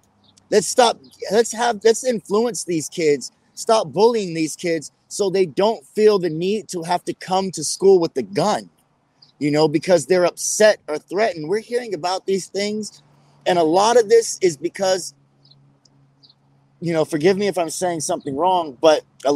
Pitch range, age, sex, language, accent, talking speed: 150-205 Hz, 30-49, male, English, American, 175 wpm